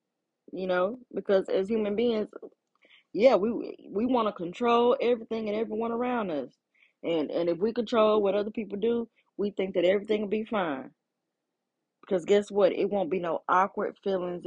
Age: 20-39